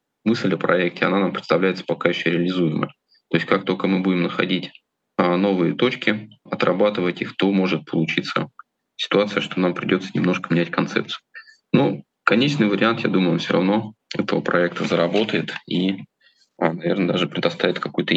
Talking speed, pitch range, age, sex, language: 150 wpm, 85-100 Hz, 20-39, male, Russian